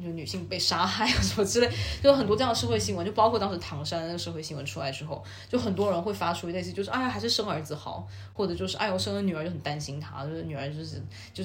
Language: Chinese